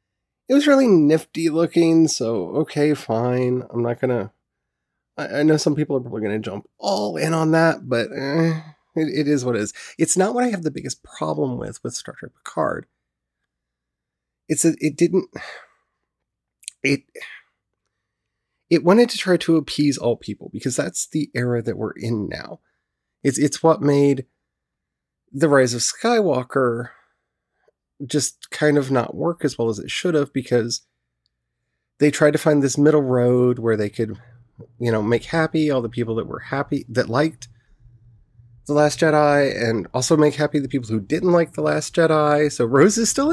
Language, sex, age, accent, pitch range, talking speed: English, male, 30-49, American, 120-160 Hz, 175 wpm